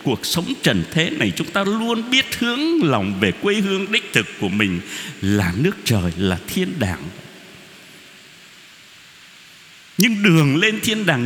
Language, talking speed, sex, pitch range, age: Vietnamese, 155 wpm, male, 140-195 Hz, 60-79